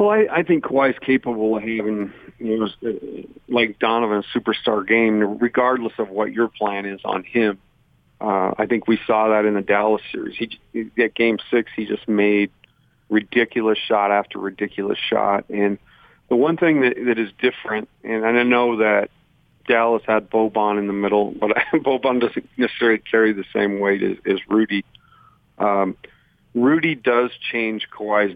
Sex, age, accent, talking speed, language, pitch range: male, 50-69, American, 170 wpm, English, 105-120 Hz